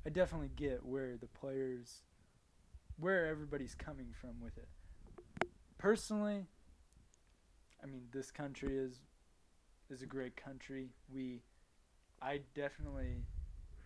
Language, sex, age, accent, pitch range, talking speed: English, male, 20-39, American, 115-145 Hz, 110 wpm